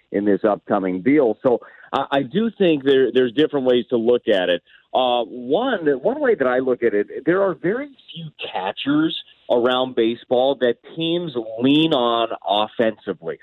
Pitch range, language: 115-155 Hz, English